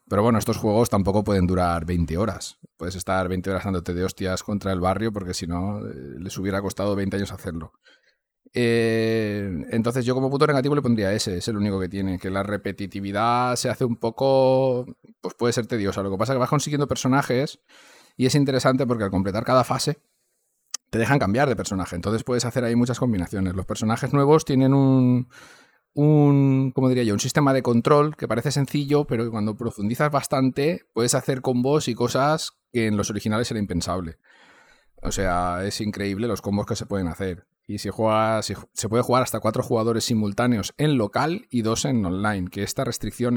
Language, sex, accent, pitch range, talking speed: Spanish, male, Spanish, 100-125 Hz, 195 wpm